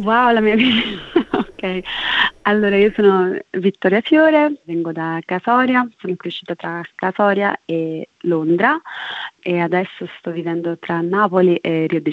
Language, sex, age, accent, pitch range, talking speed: Italian, female, 30-49, native, 170-190 Hz, 135 wpm